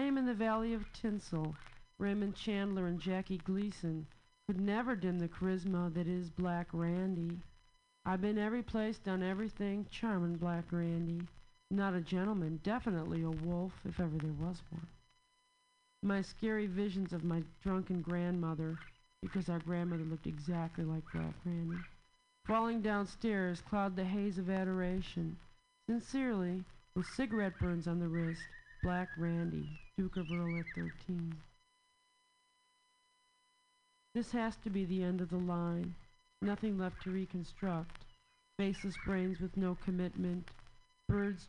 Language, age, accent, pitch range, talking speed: English, 50-69, American, 170-220 Hz, 135 wpm